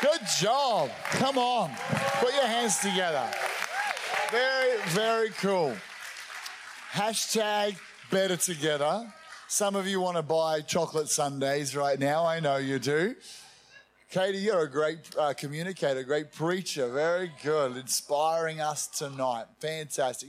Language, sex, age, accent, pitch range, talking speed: English, male, 30-49, Australian, 145-190 Hz, 125 wpm